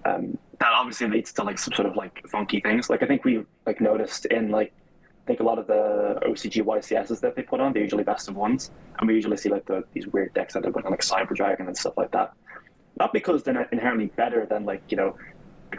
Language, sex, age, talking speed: English, male, 20-39, 260 wpm